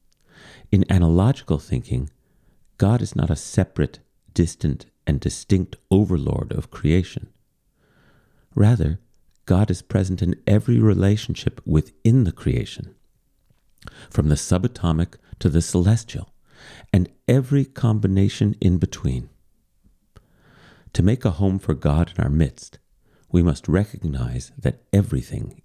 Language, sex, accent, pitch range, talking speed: English, male, American, 80-110 Hz, 115 wpm